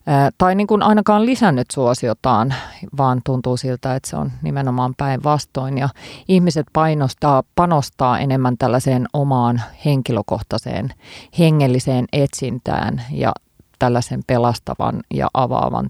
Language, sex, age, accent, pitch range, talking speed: Finnish, female, 30-49, native, 125-155 Hz, 100 wpm